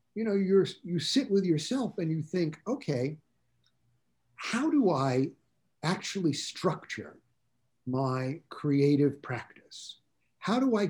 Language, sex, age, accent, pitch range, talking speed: English, male, 50-69, American, 135-195 Hz, 120 wpm